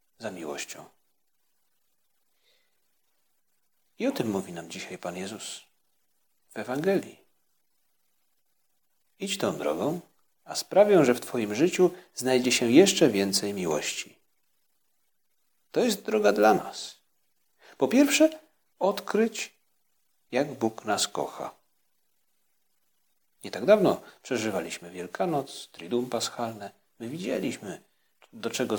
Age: 40-59